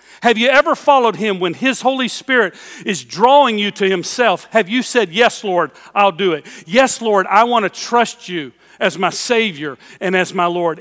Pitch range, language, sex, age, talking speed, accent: 180-235 Hz, English, male, 40-59, 200 wpm, American